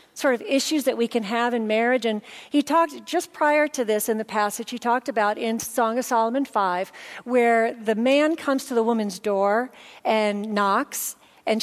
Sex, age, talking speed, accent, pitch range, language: female, 40-59, 195 wpm, American, 215-280 Hz, English